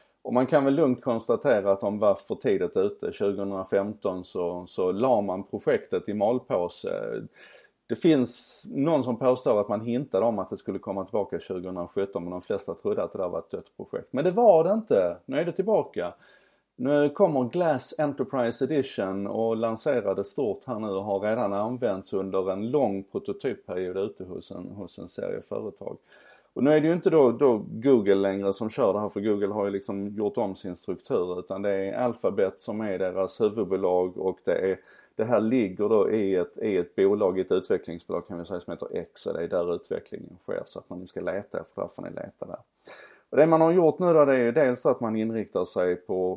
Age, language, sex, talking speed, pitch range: 30-49, Swedish, male, 205 wpm, 100-160 Hz